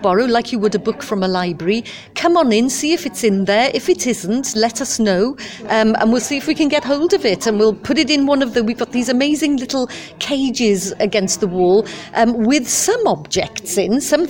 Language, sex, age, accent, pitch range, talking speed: English, female, 50-69, British, 205-255 Hz, 240 wpm